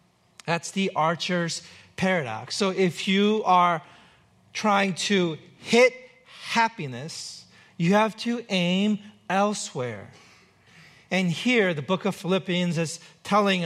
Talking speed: 110 wpm